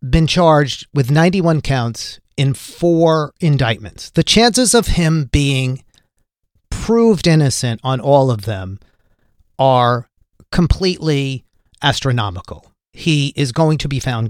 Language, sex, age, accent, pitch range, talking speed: English, male, 40-59, American, 115-170 Hz, 120 wpm